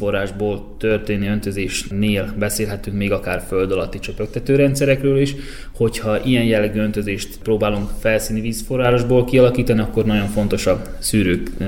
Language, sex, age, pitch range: Hungarian, male, 20-39, 100-115 Hz